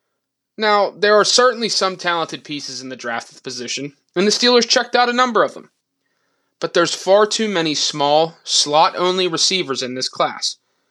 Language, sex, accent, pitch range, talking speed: English, male, American, 150-215 Hz, 170 wpm